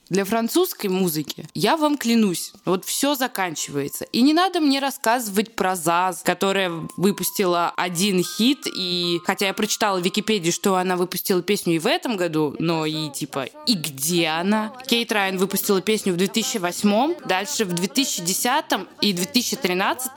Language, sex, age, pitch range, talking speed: Russian, female, 20-39, 185-230 Hz, 150 wpm